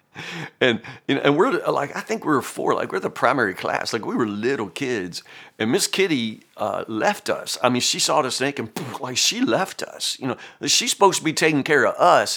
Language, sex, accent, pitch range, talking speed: English, male, American, 120-160 Hz, 235 wpm